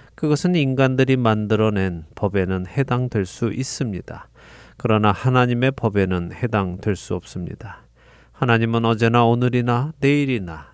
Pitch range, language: 105-135 Hz, Korean